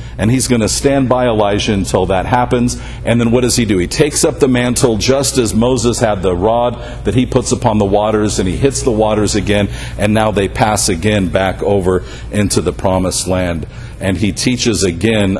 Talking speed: 210 wpm